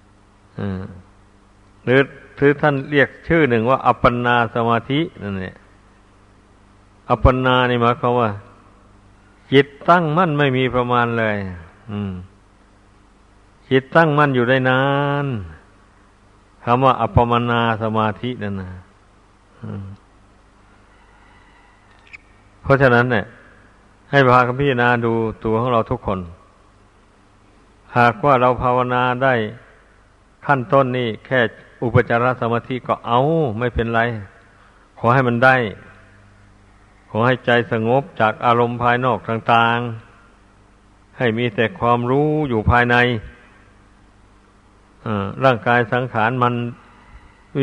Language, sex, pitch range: Thai, male, 100-125 Hz